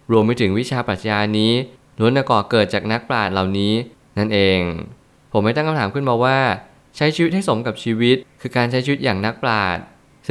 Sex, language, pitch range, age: male, Thai, 100-120 Hz, 20-39